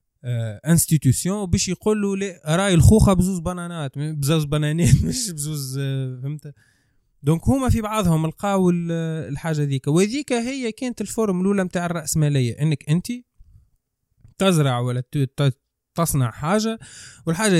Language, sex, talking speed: Arabic, male, 125 wpm